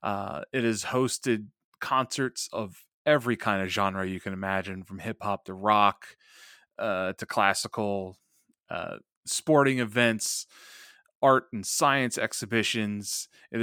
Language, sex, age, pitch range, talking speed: English, male, 30-49, 95-115 Hz, 125 wpm